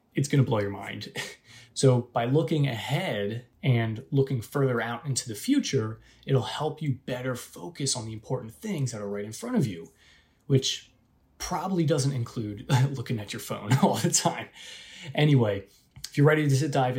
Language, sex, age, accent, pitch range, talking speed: English, male, 20-39, American, 110-135 Hz, 175 wpm